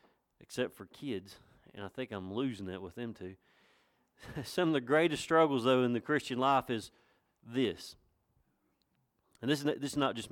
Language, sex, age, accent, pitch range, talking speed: English, male, 40-59, American, 115-145 Hz, 180 wpm